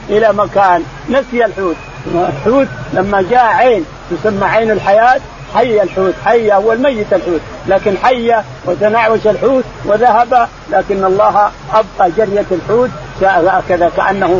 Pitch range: 180-220 Hz